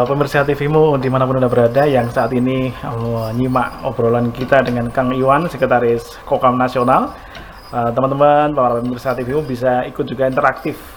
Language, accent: Indonesian, native